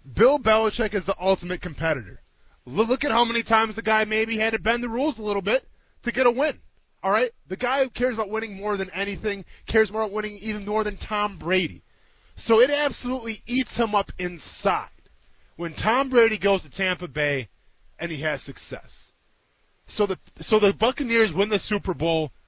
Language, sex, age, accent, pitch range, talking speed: English, male, 20-39, American, 170-225 Hz, 190 wpm